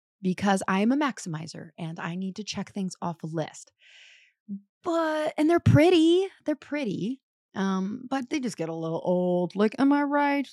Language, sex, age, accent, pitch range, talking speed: English, female, 30-49, American, 160-215 Hz, 185 wpm